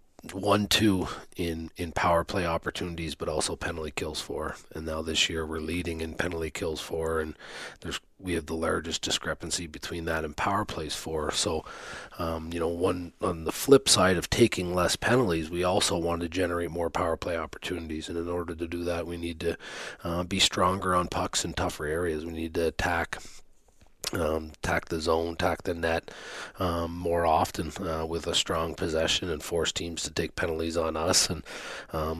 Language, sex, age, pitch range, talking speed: English, male, 40-59, 80-90 Hz, 190 wpm